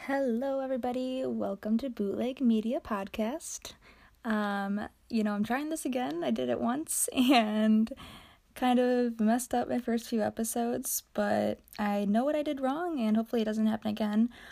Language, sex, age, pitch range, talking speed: English, female, 20-39, 205-250 Hz, 165 wpm